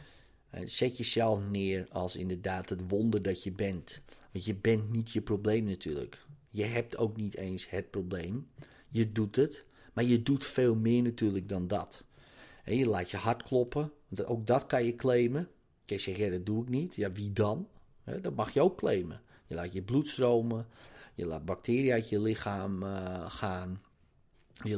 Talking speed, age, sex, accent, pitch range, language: 180 wpm, 50-69, male, Dutch, 100-120 Hz, Dutch